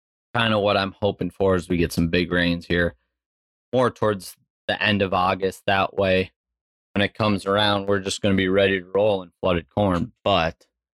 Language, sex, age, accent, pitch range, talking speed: English, male, 20-39, American, 90-115 Hz, 195 wpm